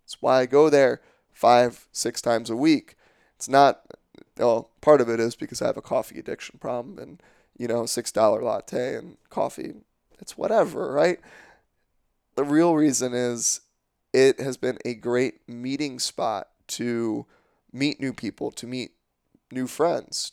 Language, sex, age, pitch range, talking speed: English, male, 20-39, 120-150 Hz, 155 wpm